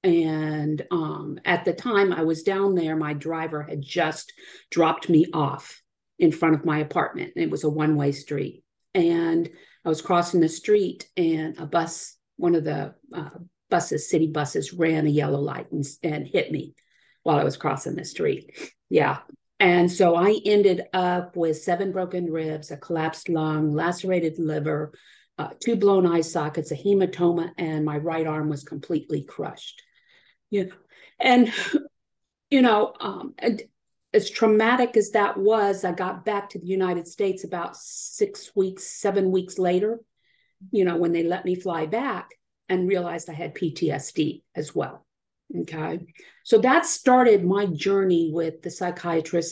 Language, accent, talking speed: English, American, 165 wpm